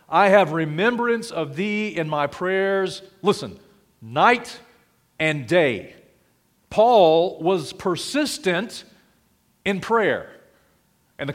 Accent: American